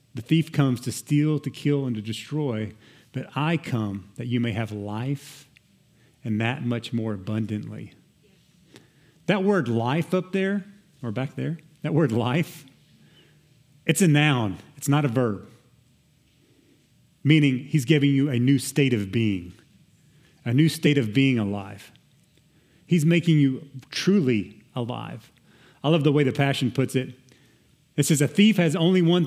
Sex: male